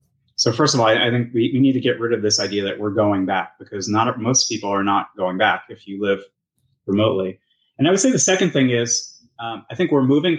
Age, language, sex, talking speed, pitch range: 30-49, English, male, 250 wpm, 105-130 Hz